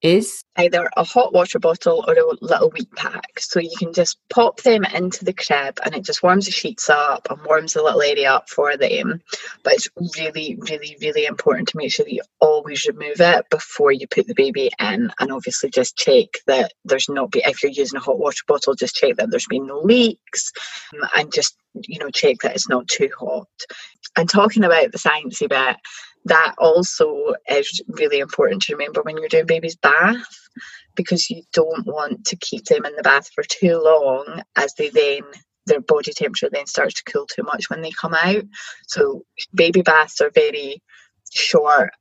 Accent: British